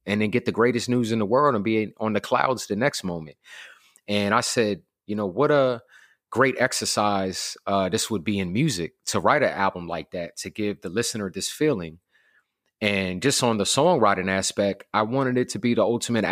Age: 30-49